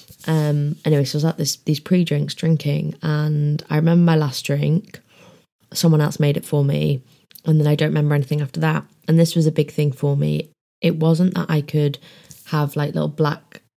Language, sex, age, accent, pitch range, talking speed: English, female, 20-39, British, 130-155 Hz, 205 wpm